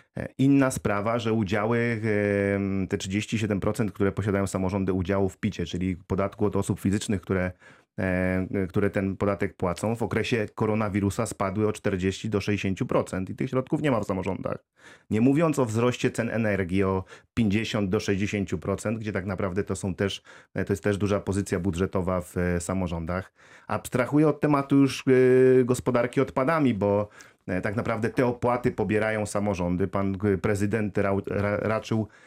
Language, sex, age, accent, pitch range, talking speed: Polish, male, 30-49, native, 100-120 Hz, 140 wpm